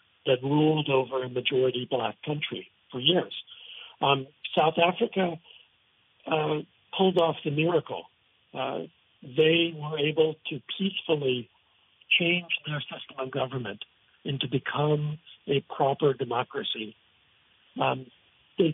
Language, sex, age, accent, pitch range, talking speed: English, male, 60-79, American, 135-165 Hz, 115 wpm